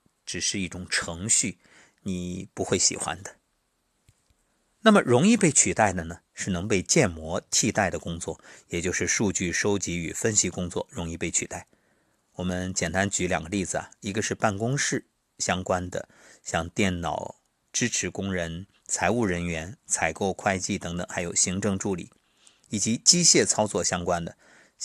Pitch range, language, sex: 90-110 Hz, Chinese, male